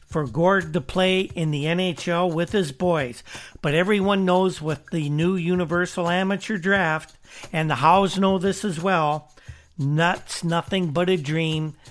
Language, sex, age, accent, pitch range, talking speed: English, male, 50-69, American, 155-185 Hz, 155 wpm